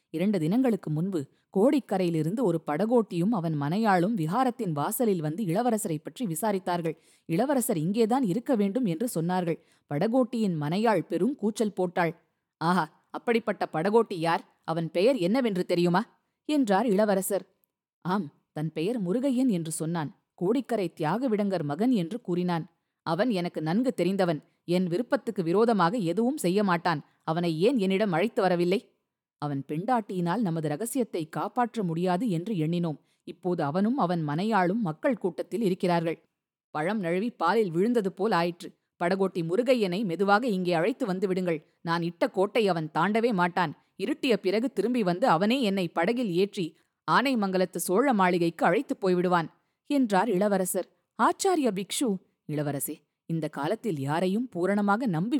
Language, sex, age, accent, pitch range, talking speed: Tamil, female, 20-39, native, 170-225 Hz, 125 wpm